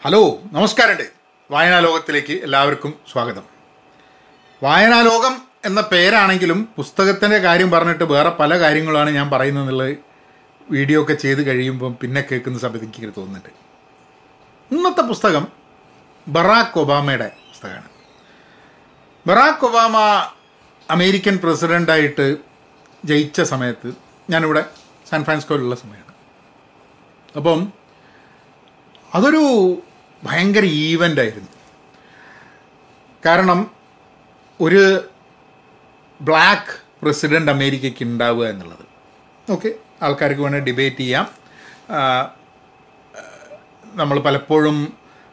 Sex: male